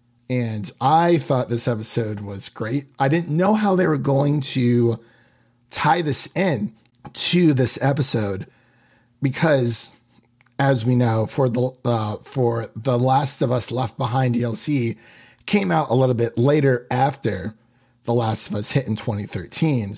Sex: male